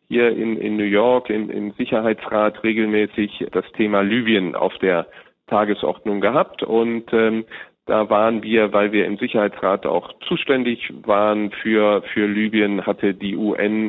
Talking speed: 145 wpm